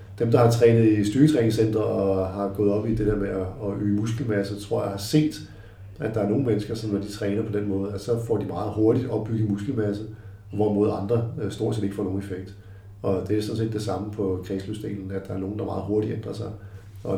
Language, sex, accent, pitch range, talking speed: Danish, male, native, 100-115 Hz, 235 wpm